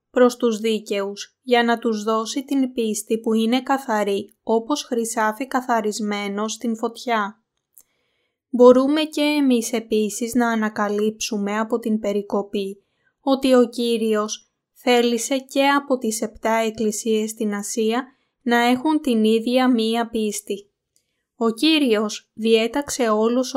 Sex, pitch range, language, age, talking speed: female, 220-255 Hz, Greek, 20-39, 120 wpm